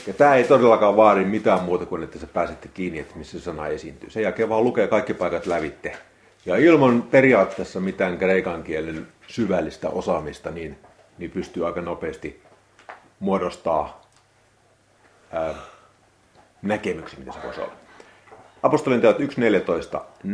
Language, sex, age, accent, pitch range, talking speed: Finnish, male, 40-59, native, 90-115 Hz, 135 wpm